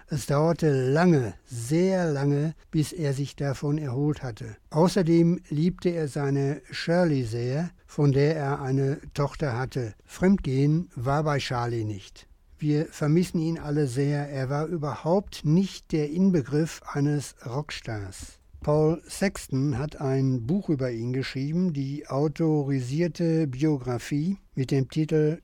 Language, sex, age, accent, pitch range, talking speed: German, male, 60-79, German, 130-155 Hz, 130 wpm